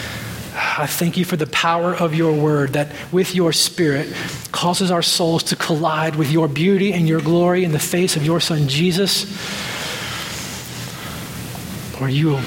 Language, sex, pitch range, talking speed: English, male, 145-175 Hz, 155 wpm